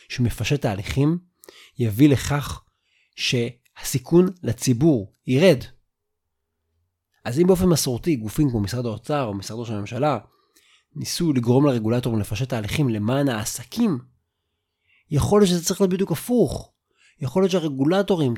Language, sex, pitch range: Hebrew, male, 95-140 Hz